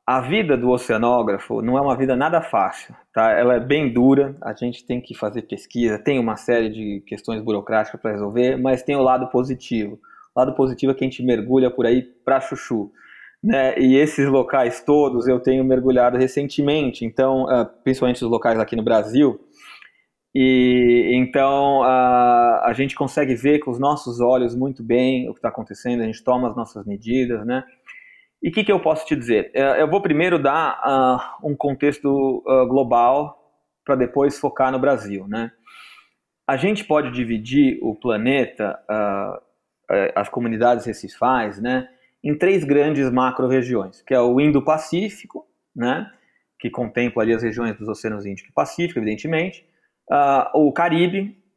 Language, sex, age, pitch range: Portuguese, male, 20-39, 120-145 Hz